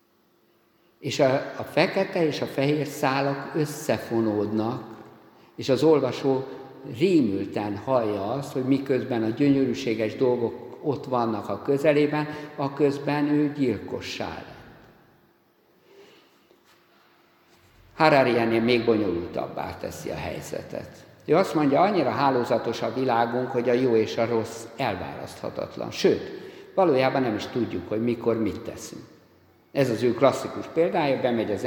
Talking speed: 125 wpm